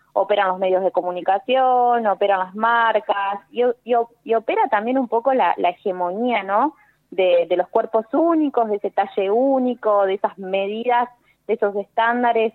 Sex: female